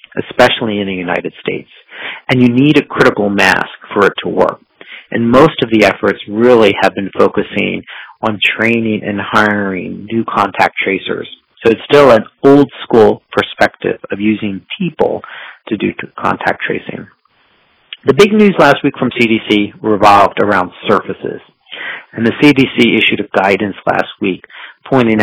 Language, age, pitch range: English, 40-59, 105-135 Hz